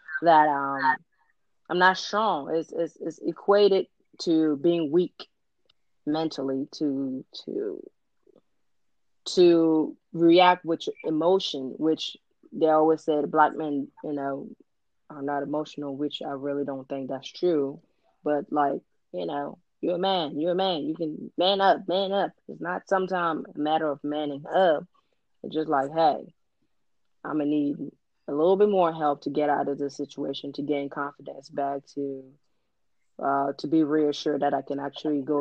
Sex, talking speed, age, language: female, 160 wpm, 30-49, English